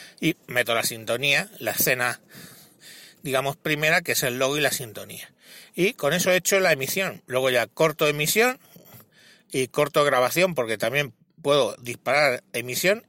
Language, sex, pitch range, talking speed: Spanish, male, 125-155 Hz, 155 wpm